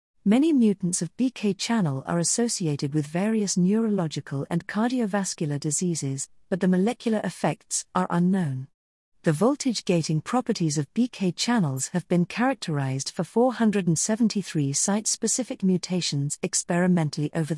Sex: female